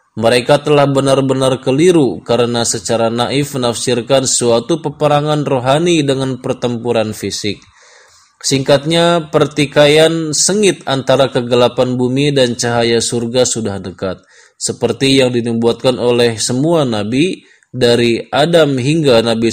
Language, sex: Indonesian, male